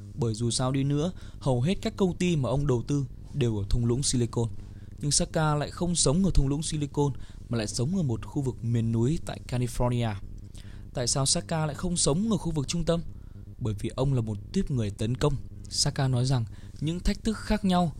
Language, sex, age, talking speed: Vietnamese, male, 20-39, 225 wpm